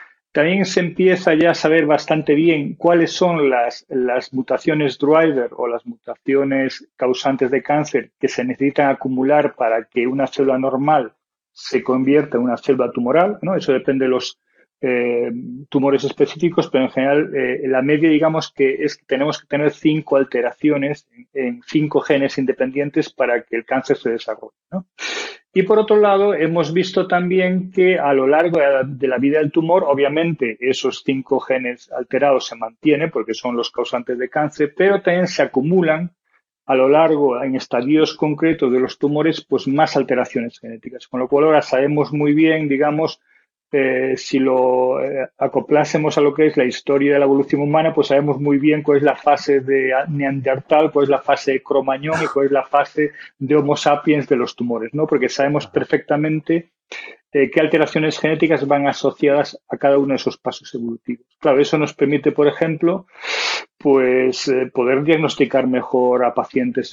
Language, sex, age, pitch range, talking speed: Spanish, male, 40-59, 130-155 Hz, 170 wpm